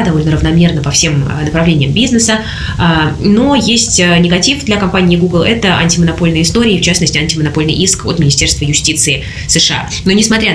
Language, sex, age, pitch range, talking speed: Russian, female, 20-39, 150-185 Hz, 140 wpm